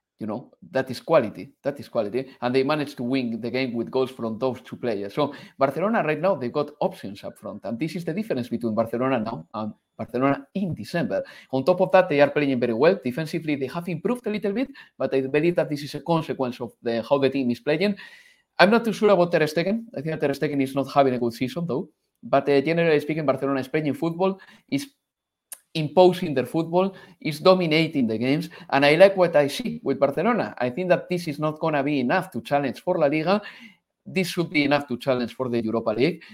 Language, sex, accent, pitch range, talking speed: English, male, Spanish, 130-180 Hz, 225 wpm